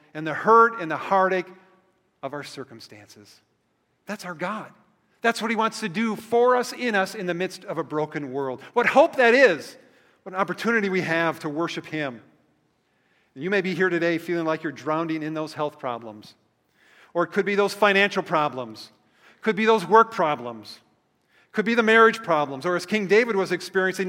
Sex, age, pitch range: male, 40-59, 150-210 Hz